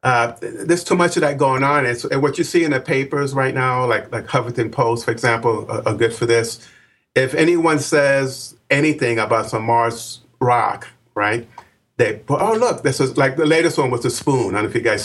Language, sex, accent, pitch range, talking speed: English, male, American, 115-135 Hz, 225 wpm